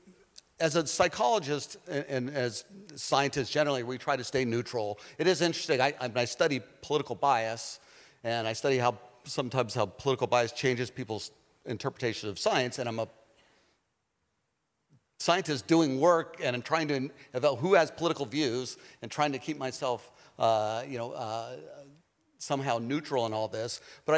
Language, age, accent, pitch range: Greek, 50-69, American, 120-150 Hz